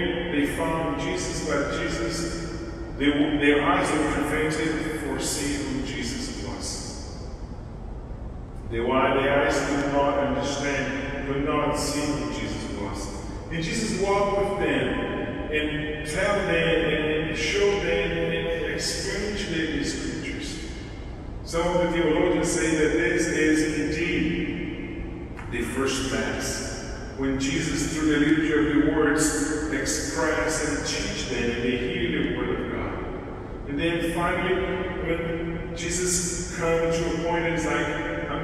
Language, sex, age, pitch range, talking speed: English, male, 40-59, 130-165 Hz, 135 wpm